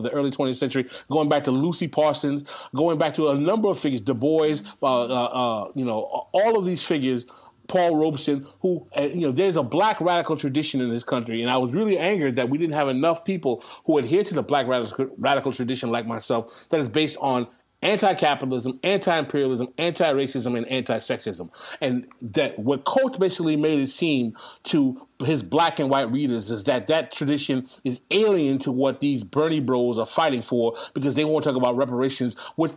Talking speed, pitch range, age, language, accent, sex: 190 wpm, 130-160 Hz, 30-49, English, American, male